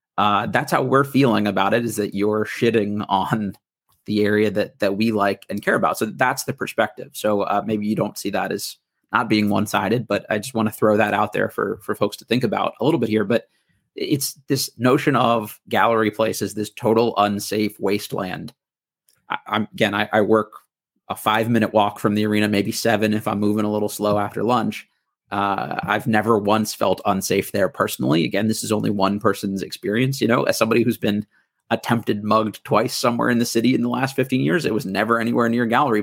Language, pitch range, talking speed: English, 105-115 Hz, 210 wpm